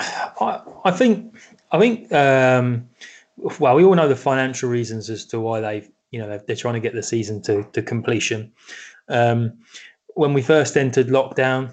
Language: English